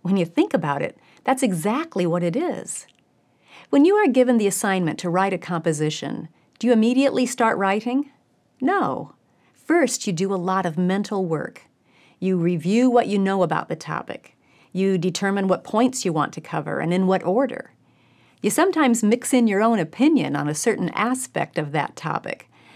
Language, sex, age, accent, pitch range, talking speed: English, female, 40-59, American, 170-245 Hz, 180 wpm